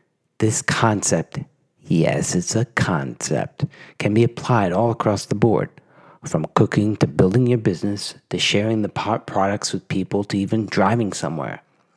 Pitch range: 110-140 Hz